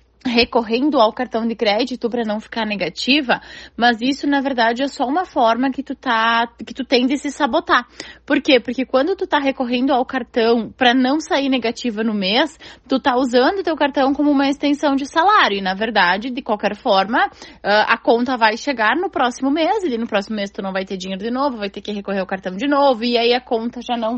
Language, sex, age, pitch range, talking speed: Portuguese, female, 20-39, 230-285 Hz, 220 wpm